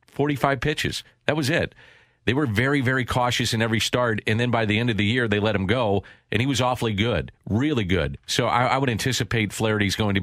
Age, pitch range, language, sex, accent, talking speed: 40-59, 100-120 Hz, English, male, American, 235 wpm